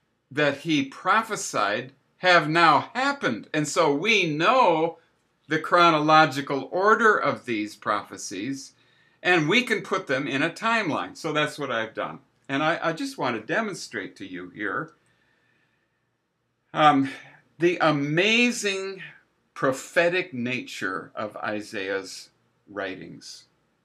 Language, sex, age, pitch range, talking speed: English, male, 60-79, 125-165 Hz, 120 wpm